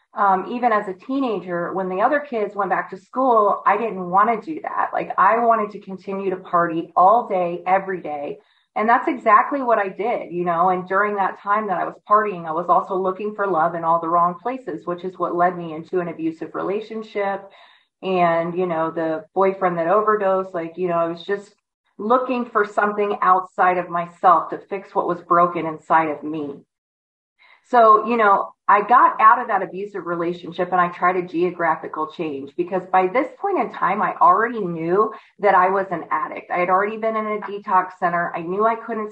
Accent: American